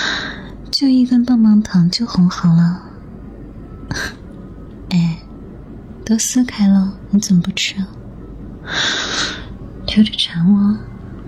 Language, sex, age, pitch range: Chinese, female, 30-49, 170-215 Hz